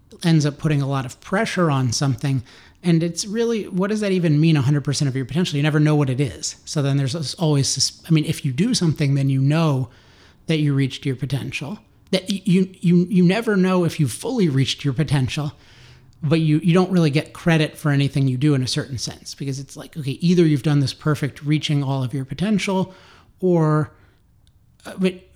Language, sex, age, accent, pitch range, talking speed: English, male, 30-49, American, 140-170 Hz, 200 wpm